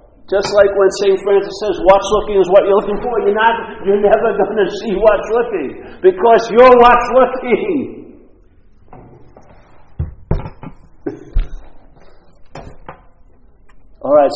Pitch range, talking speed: 165-265 Hz, 115 wpm